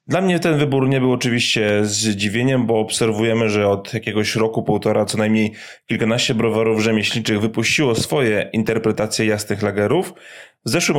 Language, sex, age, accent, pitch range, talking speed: Polish, male, 20-39, native, 105-130 Hz, 145 wpm